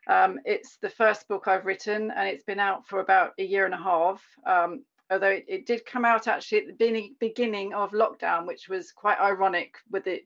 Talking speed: 215 wpm